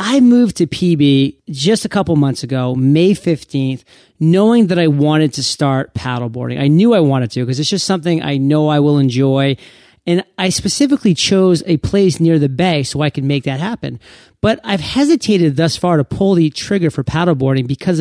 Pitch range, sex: 140-185 Hz, male